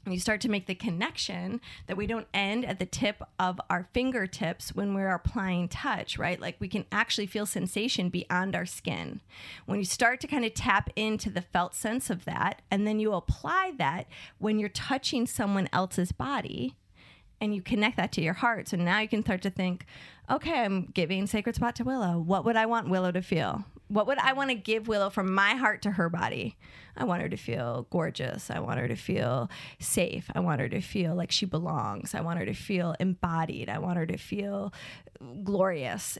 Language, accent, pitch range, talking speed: English, American, 180-220 Hz, 210 wpm